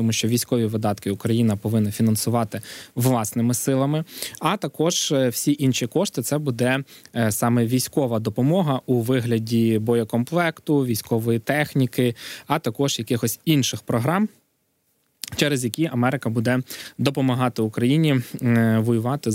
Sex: male